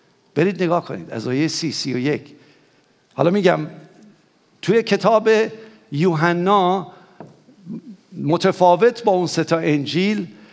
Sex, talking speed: male, 105 wpm